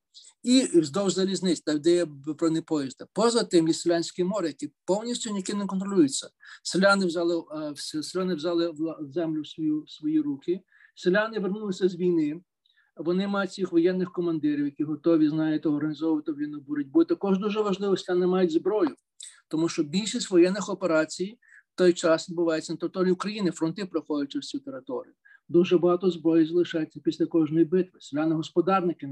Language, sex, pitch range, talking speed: Ukrainian, male, 160-200 Hz, 155 wpm